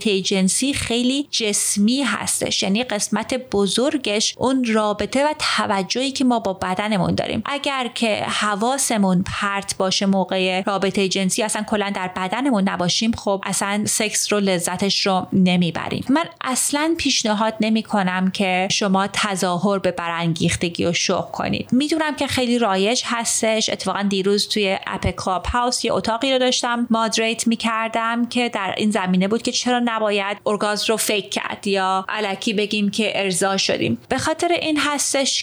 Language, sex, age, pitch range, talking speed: Persian, female, 30-49, 200-255 Hz, 150 wpm